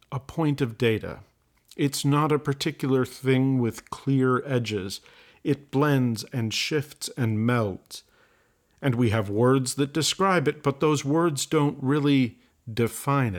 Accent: American